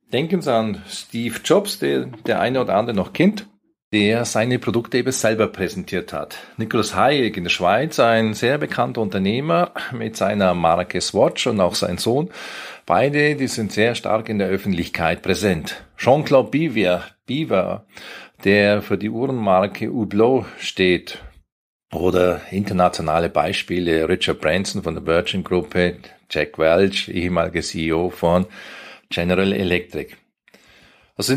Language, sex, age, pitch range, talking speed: German, male, 40-59, 95-155 Hz, 135 wpm